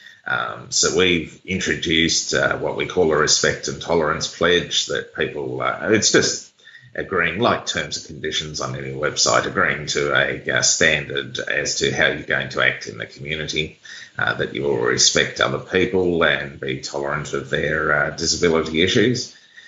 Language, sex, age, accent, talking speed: English, male, 30-49, Australian, 170 wpm